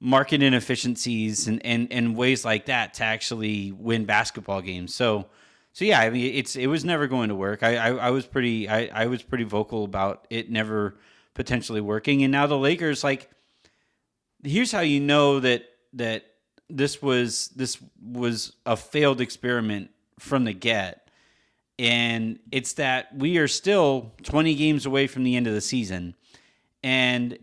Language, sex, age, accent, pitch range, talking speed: English, male, 30-49, American, 115-140 Hz, 170 wpm